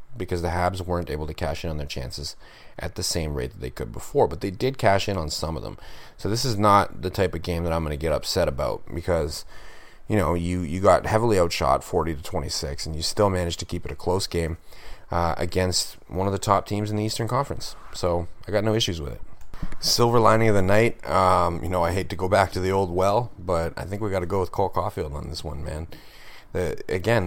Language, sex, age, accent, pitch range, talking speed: English, male, 30-49, American, 85-100 Hz, 250 wpm